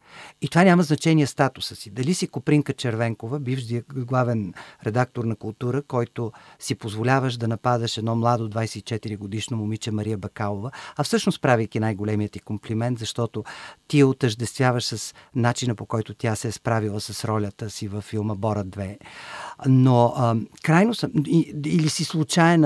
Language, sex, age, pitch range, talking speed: Bulgarian, male, 50-69, 115-150 Hz, 150 wpm